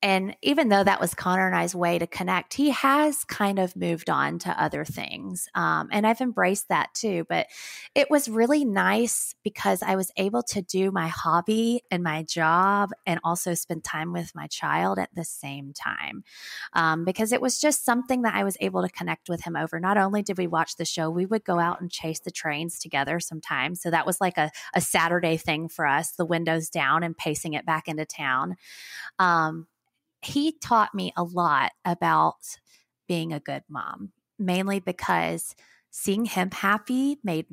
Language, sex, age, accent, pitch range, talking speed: English, female, 20-39, American, 160-195 Hz, 195 wpm